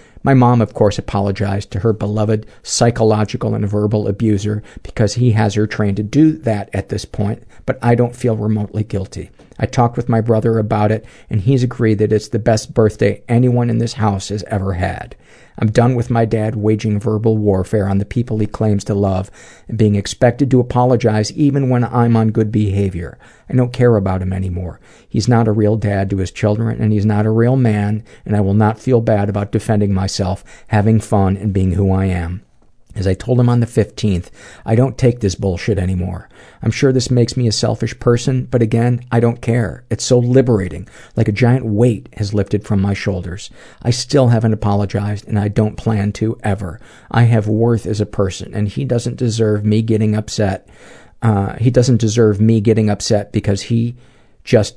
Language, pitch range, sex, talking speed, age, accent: English, 100-120 Hz, male, 200 wpm, 50-69, American